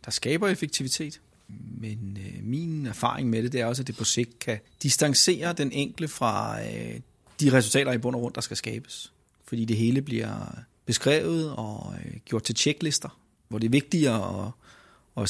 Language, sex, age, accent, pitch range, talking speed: Danish, male, 30-49, native, 115-150 Hz, 185 wpm